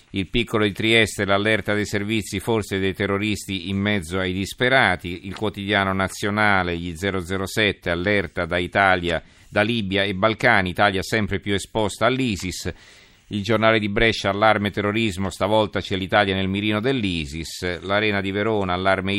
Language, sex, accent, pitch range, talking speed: Italian, male, native, 90-110 Hz, 145 wpm